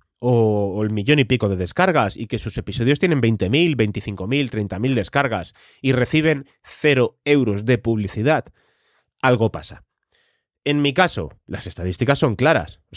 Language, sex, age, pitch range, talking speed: Spanish, male, 30-49, 100-150 Hz, 150 wpm